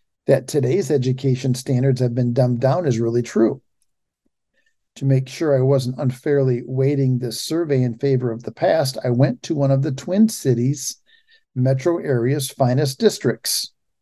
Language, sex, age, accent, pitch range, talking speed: English, male, 50-69, American, 125-145 Hz, 160 wpm